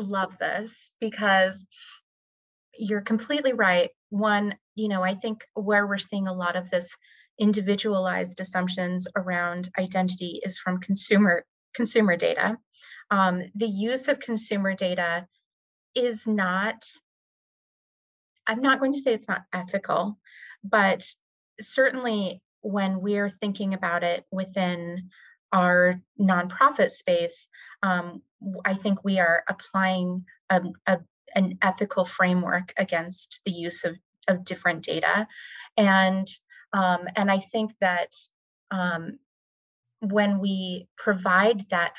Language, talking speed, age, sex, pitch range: English, 120 wpm, 30-49, female, 180-210 Hz